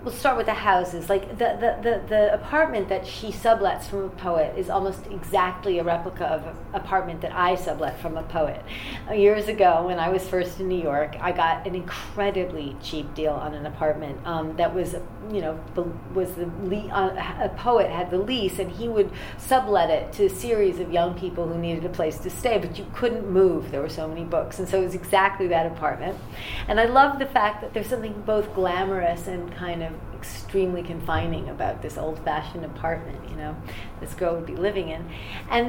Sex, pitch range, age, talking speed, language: female, 165-210 Hz, 40-59, 210 wpm, English